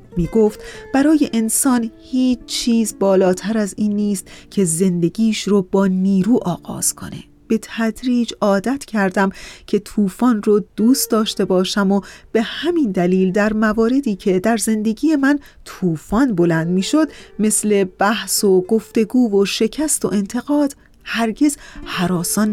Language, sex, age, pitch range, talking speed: Persian, female, 30-49, 185-230 Hz, 135 wpm